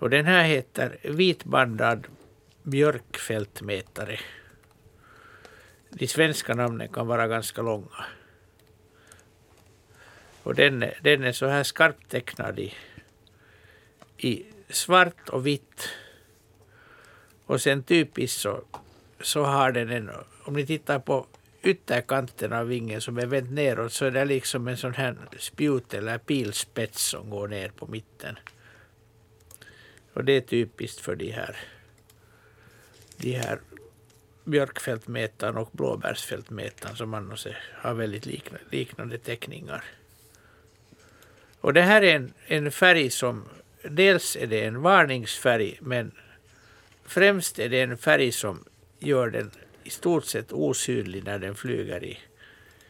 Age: 60-79